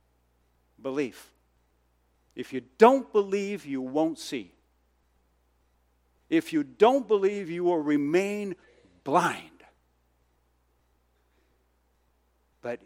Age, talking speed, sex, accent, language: 60-79, 80 wpm, male, American, English